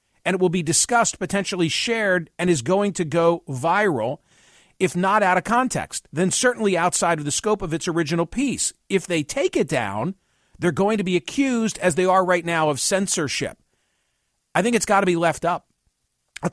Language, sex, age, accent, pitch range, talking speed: English, male, 50-69, American, 160-210 Hz, 195 wpm